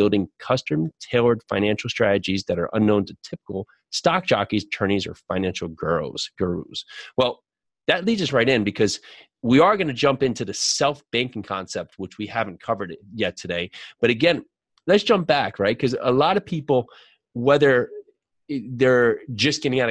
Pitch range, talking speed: 100-135 Hz, 165 wpm